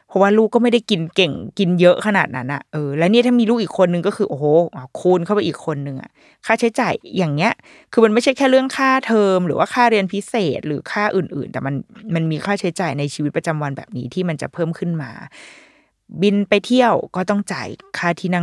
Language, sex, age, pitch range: Thai, female, 20-39, 165-220 Hz